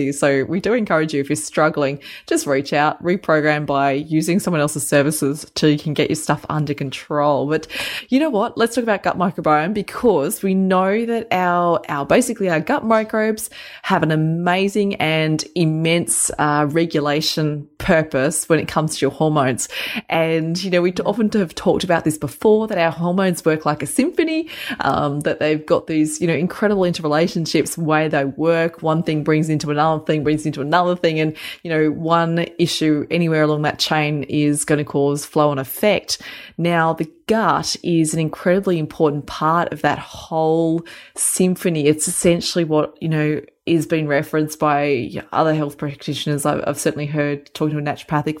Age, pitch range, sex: 20-39, 150-175 Hz, female